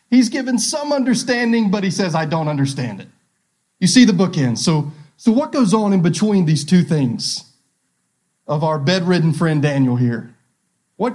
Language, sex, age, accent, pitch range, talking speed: English, male, 30-49, American, 150-200 Hz, 170 wpm